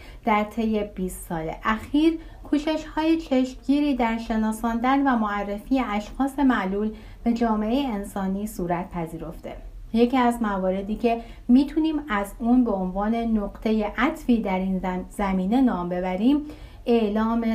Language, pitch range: Persian, 195-250 Hz